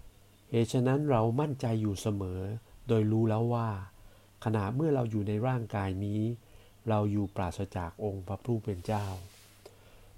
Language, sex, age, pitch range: Thai, male, 60-79, 100-120 Hz